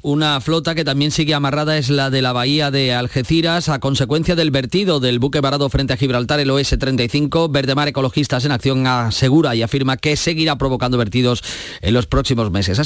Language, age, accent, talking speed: Spanish, 30-49, Spanish, 190 wpm